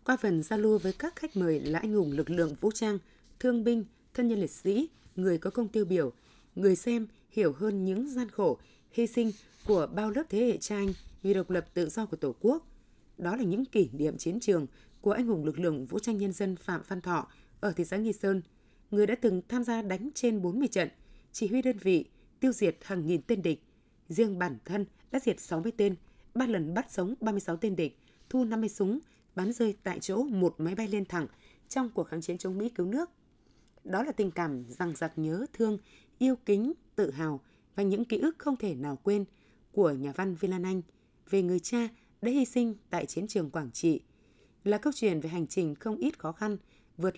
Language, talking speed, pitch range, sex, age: Vietnamese, 230 wpm, 175-230 Hz, female, 20-39